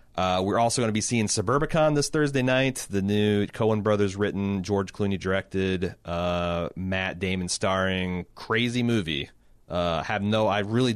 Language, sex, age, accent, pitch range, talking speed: English, male, 30-49, American, 95-115 Hz, 165 wpm